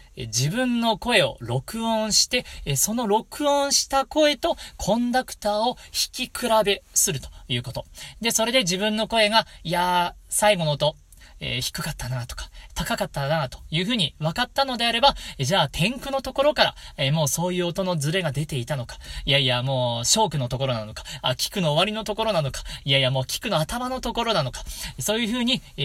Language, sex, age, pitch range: Japanese, male, 40-59, 135-215 Hz